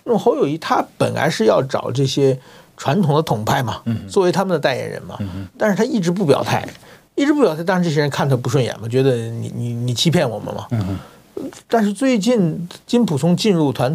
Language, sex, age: Chinese, male, 50-69